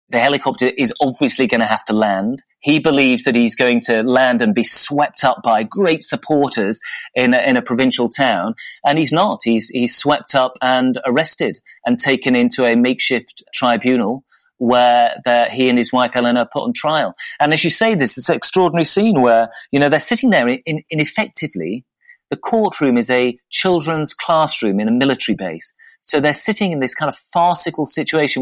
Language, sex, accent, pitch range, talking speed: English, male, British, 125-155 Hz, 185 wpm